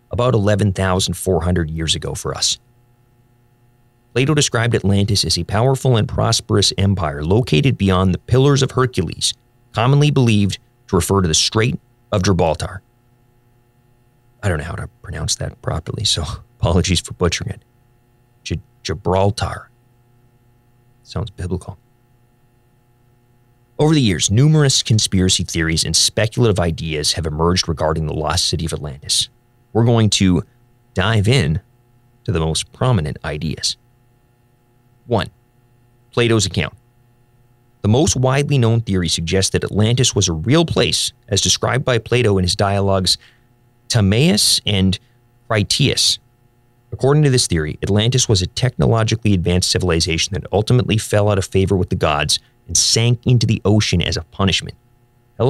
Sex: male